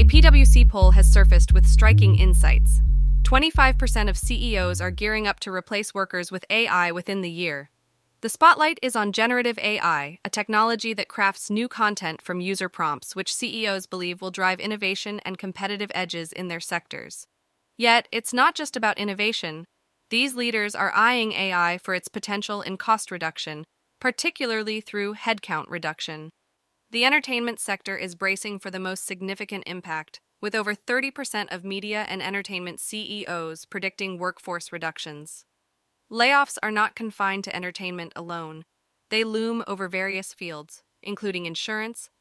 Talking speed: 150 wpm